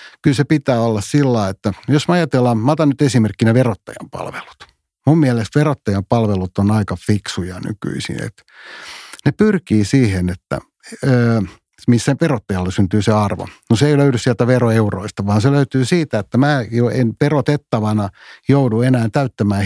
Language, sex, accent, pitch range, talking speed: Finnish, male, native, 105-135 Hz, 145 wpm